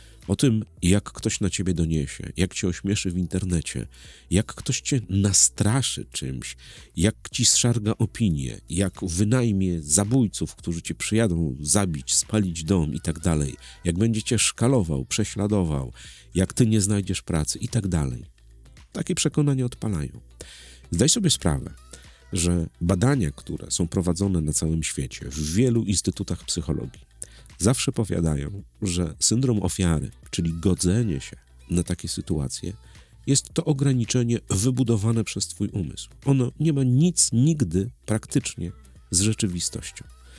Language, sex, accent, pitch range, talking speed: Polish, male, native, 85-120 Hz, 130 wpm